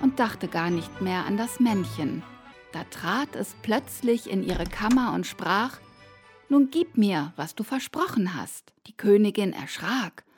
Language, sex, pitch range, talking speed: German, female, 200-265 Hz, 155 wpm